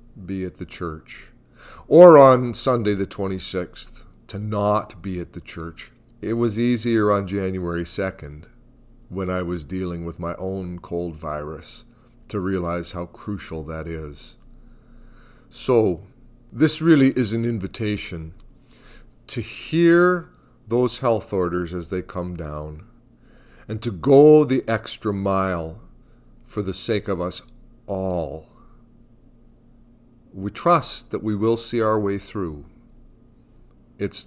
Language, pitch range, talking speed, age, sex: English, 90-120 Hz, 130 wpm, 40-59, male